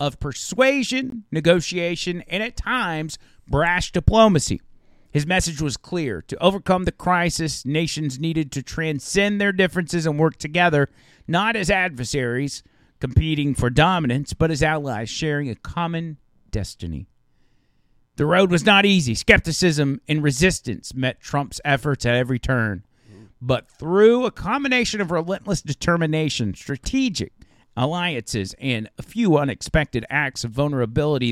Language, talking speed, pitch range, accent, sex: English, 130 wpm, 135-190 Hz, American, male